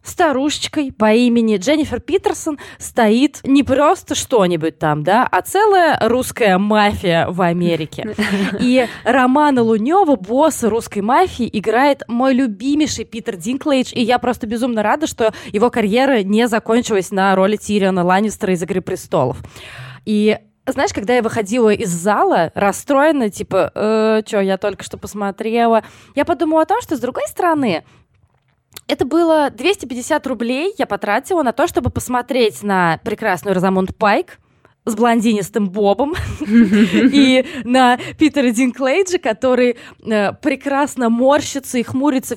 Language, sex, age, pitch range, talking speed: Russian, female, 20-39, 200-280 Hz, 135 wpm